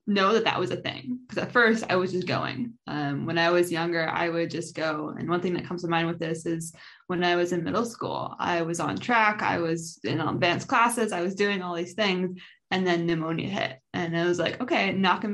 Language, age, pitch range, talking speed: English, 20-39, 175-215 Hz, 245 wpm